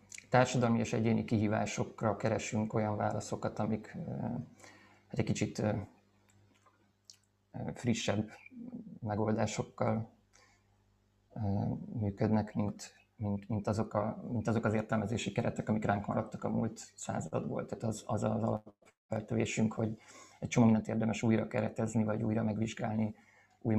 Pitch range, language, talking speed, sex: 105-115 Hz, Hungarian, 105 wpm, male